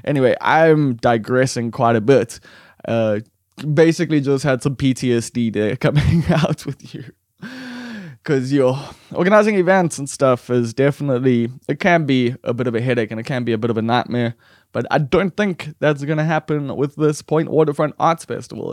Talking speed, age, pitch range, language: 180 wpm, 20-39, 115-150 Hz, English